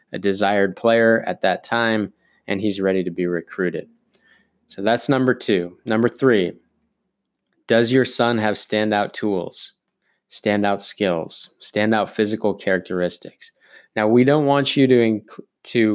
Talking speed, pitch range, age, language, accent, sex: 135 wpm, 100-115 Hz, 20-39, English, American, male